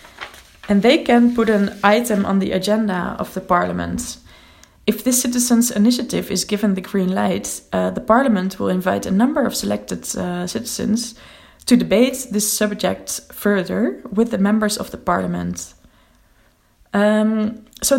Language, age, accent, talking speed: Dutch, 20-39, Dutch, 150 wpm